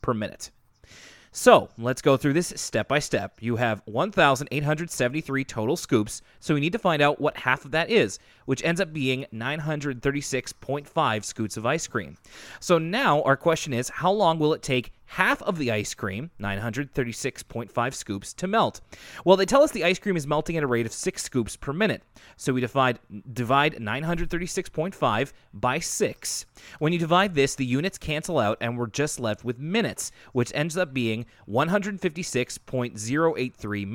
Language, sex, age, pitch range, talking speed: English, male, 30-49, 120-165 Hz, 170 wpm